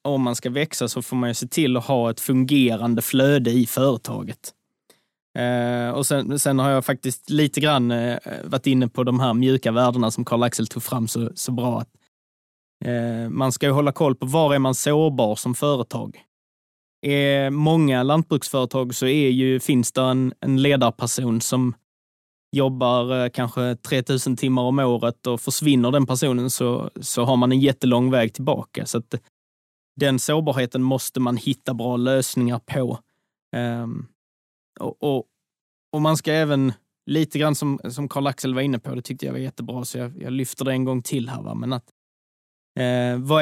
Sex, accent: male, native